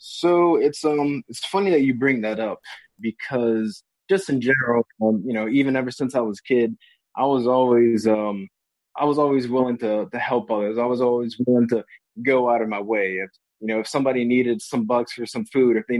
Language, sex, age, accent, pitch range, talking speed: English, male, 20-39, American, 115-145 Hz, 220 wpm